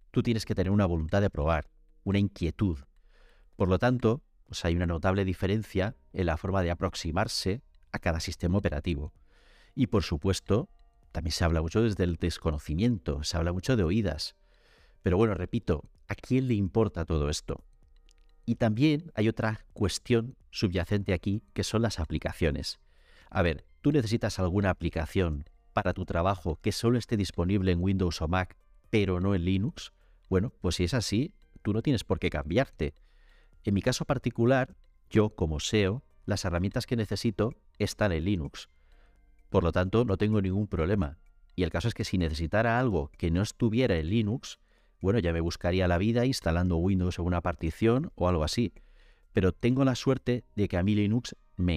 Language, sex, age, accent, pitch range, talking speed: Spanish, male, 40-59, Spanish, 85-110 Hz, 175 wpm